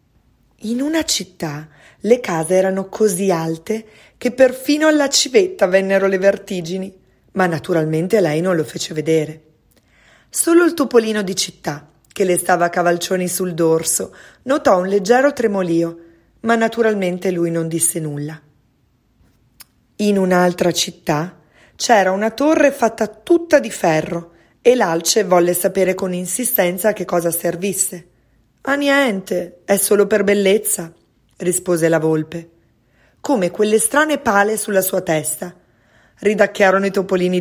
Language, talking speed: Italian, 130 wpm